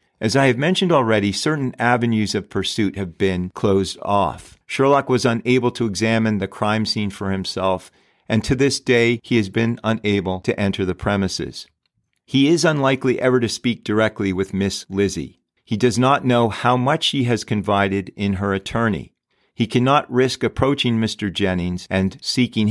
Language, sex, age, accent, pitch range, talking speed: English, male, 40-59, American, 95-120 Hz, 170 wpm